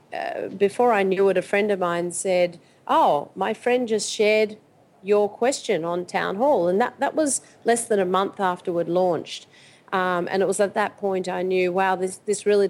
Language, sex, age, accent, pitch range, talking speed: English, female, 40-59, Australian, 170-205 Hz, 205 wpm